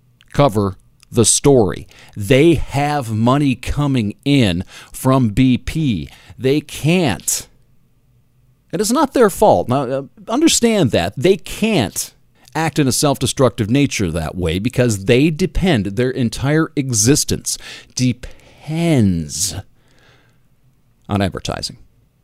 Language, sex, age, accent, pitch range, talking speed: English, male, 40-59, American, 115-150 Hz, 105 wpm